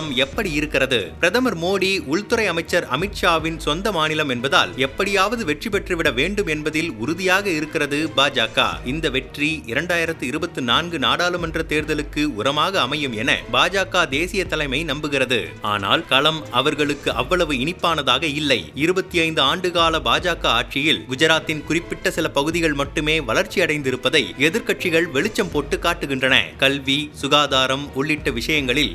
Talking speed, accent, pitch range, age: 115 wpm, native, 145-170 Hz, 30-49